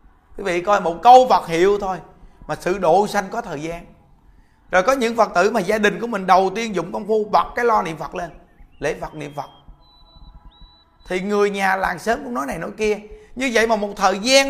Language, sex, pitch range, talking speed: Vietnamese, male, 160-225 Hz, 230 wpm